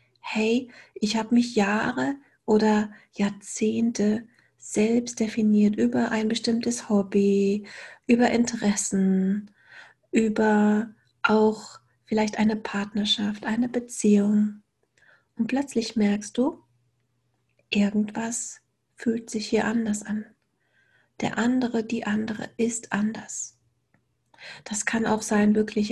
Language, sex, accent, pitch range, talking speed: German, female, German, 205-230 Hz, 100 wpm